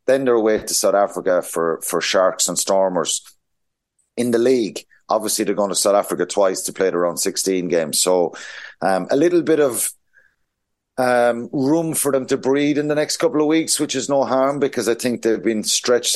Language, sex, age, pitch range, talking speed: English, male, 30-49, 95-130 Hz, 205 wpm